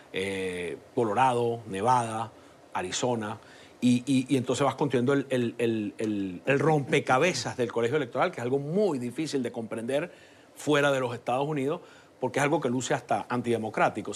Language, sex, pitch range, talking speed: English, male, 115-150 Hz, 150 wpm